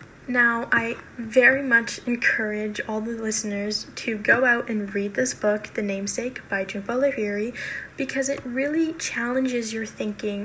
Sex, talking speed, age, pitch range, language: female, 150 wpm, 10-29, 220-255 Hz, English